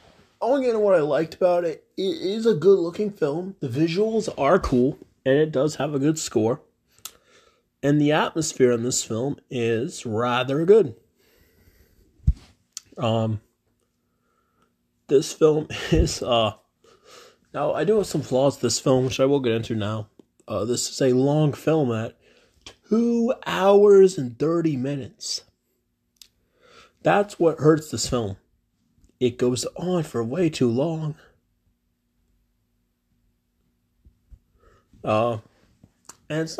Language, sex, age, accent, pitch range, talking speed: English, male, 30-49, American, 125-175 Hz, 125 wpm